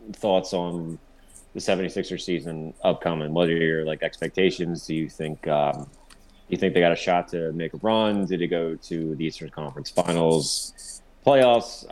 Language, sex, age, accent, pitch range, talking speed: English, male, 30-49, American, 80-90 Hz, 175 wpm